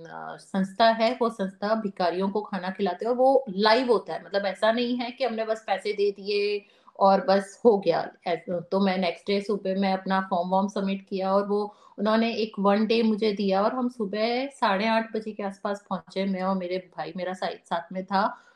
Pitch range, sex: 200-245 Hz, female